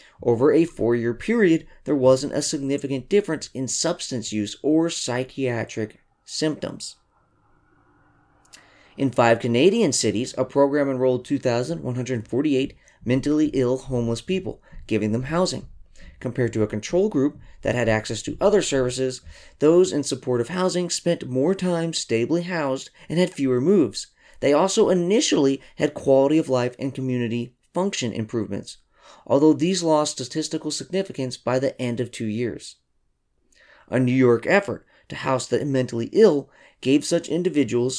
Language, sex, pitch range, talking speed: English, male, 120-155 Hz, 140 wpm